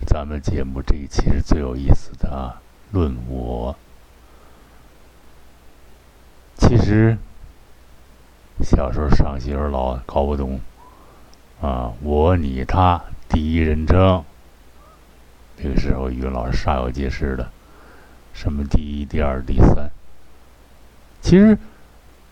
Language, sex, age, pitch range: Chinese, male, 60-79, 65-85 Hz